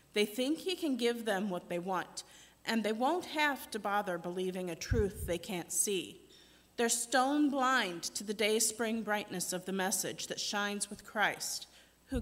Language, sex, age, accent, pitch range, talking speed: English, female, 40-59, American, 200-250 Hz, 175 wpm